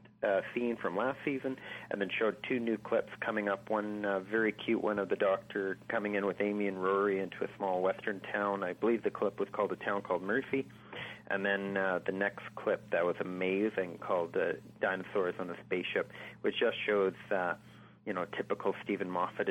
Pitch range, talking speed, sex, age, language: 95-110 Hz, 205 wpm, male, 40-59, English